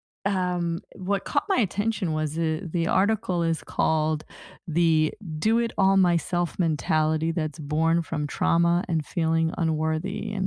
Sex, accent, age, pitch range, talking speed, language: female, American, 30-49, 165-195 Hz, 145 wpm, English